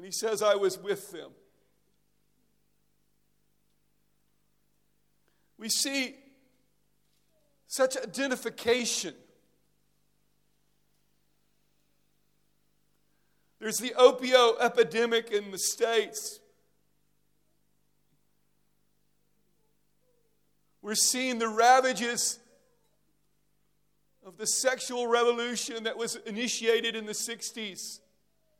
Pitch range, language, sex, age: 215-240 Hz, English, male, 50-69